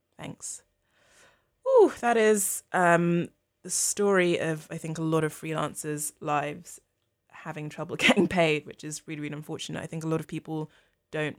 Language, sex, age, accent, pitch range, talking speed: English, female, 20-39, British, 150-175 Hz, 165 wpm